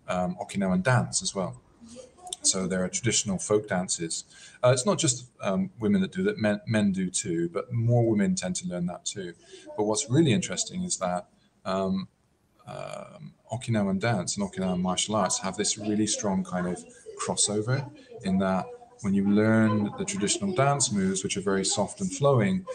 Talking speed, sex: 180 wpm, male